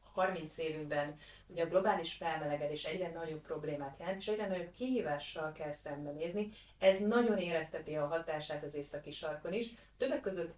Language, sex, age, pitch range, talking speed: Hungarian, female, 30-49, 155-195 Hz, 155 wpm